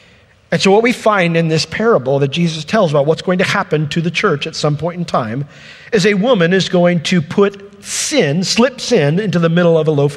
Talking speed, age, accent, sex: 235 wpm, 50-69, American, male